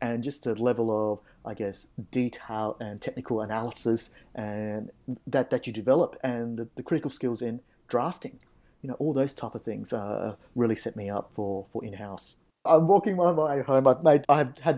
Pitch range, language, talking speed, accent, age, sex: 110-135 Hz, English, 190 wpm, Australian, 30-49, male